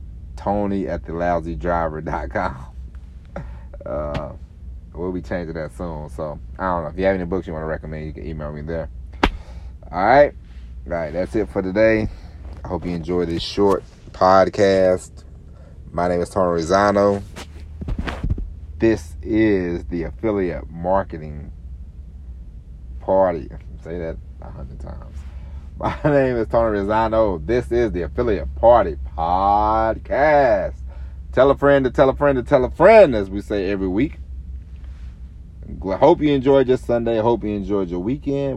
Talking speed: 155 wpm